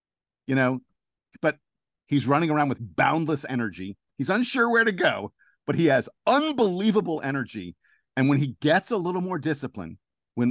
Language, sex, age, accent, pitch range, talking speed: English, male, 50-69, American, 120-160 Hz, 160 wpm